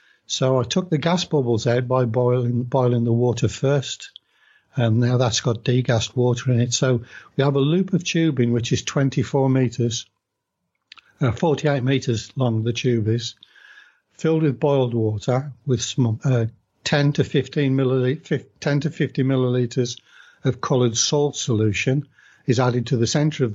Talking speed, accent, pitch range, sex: 160 wpm, British, 120-140 Hz, male